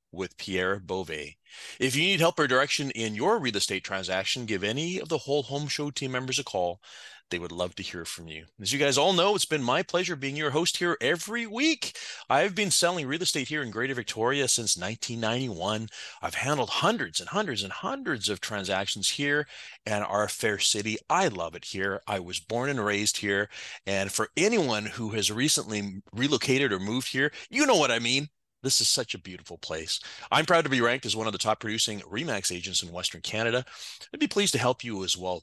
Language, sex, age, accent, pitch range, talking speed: English, male, 30-49, American, 100-150 Hz, 215 wpm